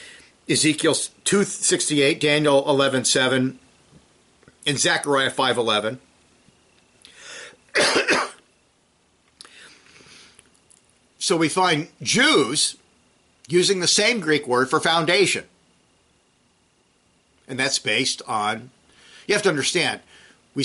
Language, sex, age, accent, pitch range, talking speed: English, male, 50-69, American, 130-185 Hz, 80 wpm